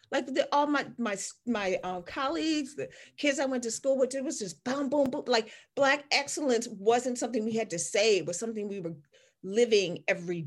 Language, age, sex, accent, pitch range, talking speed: English, 40-59, female, American, 210-275 Hz, 210 wpm